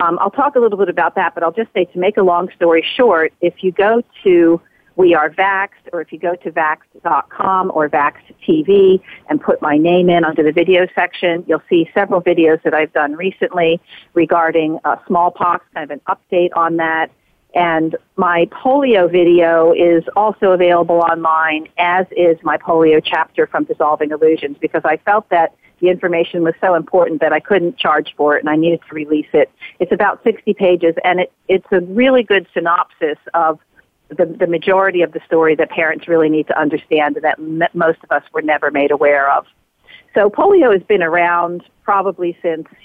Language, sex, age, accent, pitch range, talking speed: English, female, 50-69, American, 160-185 Hz, 190 wpm